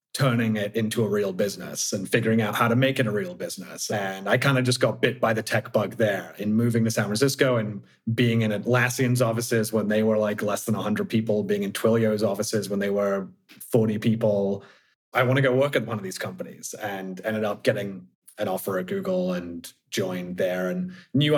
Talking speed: 220 wpm